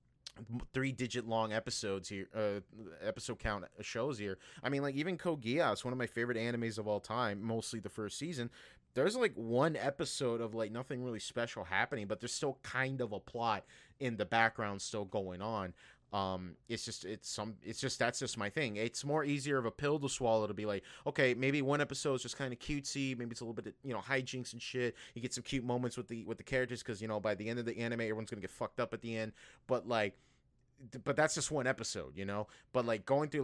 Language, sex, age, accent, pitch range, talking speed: English, male, 30-49, American, 105-130 Hz, 235 wpm